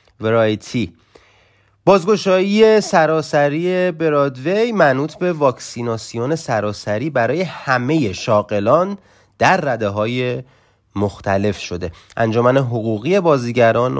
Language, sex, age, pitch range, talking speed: Persian, male, 30-49, 105-140 Hz, 80 wpm